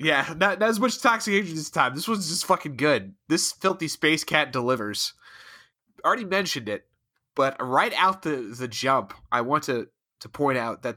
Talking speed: 185 wpm